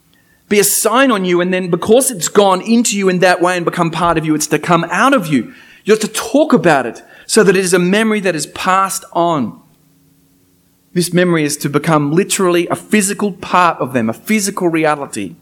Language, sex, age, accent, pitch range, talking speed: English, male, 30-49, Australian, 145-190 Hz, 220 wpm